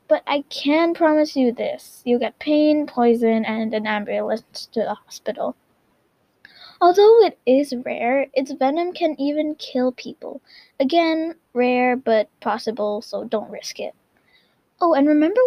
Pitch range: 240-310 Hz